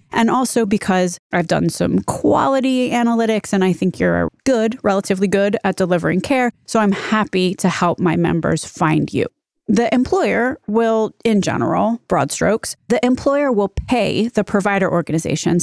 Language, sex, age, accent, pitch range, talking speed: English, female, 30-49, American, 180-230 Hz, 155 wpm